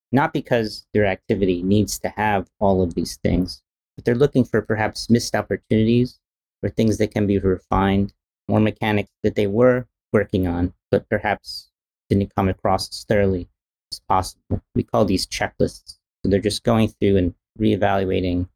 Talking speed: 165 wpm